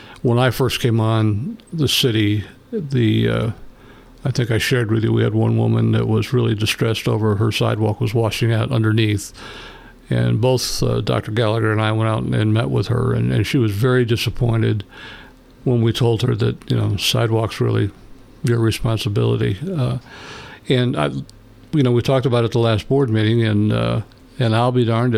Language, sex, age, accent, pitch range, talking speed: English, male, 60-79, American, 110-130 Hz, 190 wpm